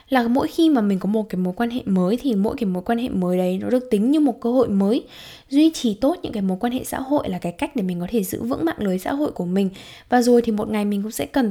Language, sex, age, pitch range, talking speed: Vietnamese, female, 10-29, 195-260 Hz, 325 wpm